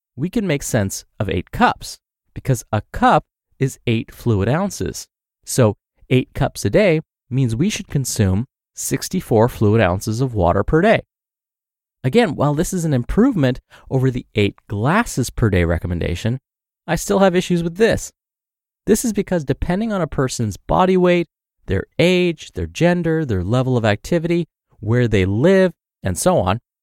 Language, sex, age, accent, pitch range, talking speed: English, male, 30-49, American, 105-160 Hz, 160 wpm